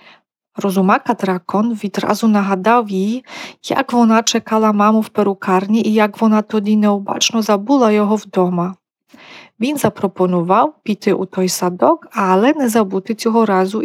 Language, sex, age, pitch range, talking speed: Ukrainian, female, 40-59, 195-235 Hz, 130 wpm